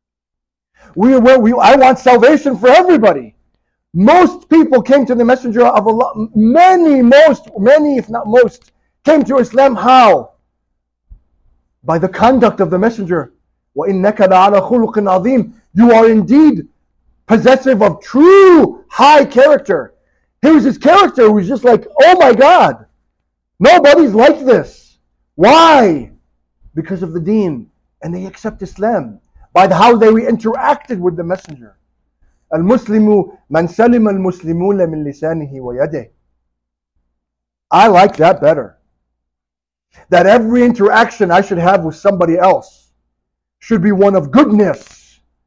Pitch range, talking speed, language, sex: 165-265 Hz, 125 wpm, English, male